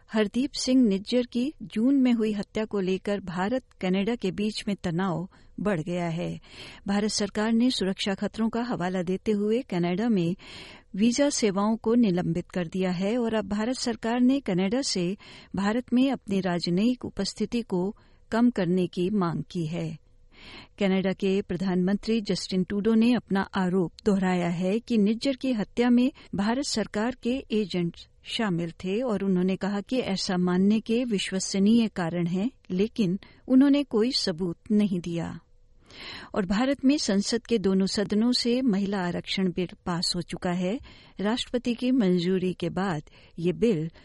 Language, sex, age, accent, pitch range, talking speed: Hindi, female, 60-79, native, 180-230 Hz, 155 wpm